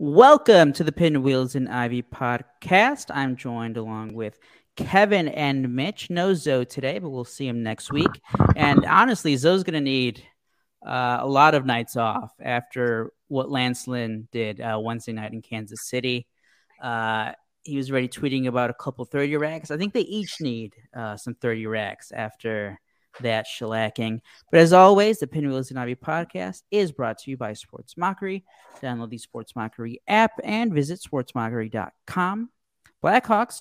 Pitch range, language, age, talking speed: 115-160 Hz, English, 40-59, 160 wpm